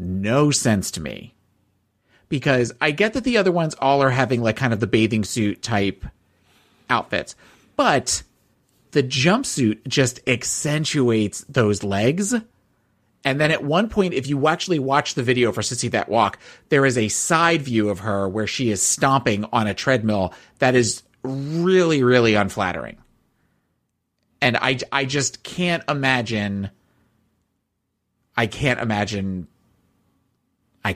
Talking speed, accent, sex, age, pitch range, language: 140 wpm, American, male, 30-49, 105-140 Hz, English